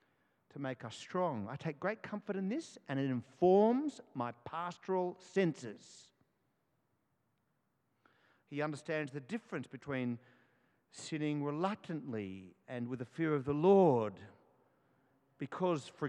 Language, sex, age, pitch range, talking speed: English, male, 50-69, 120-175 Hz, 120 wpm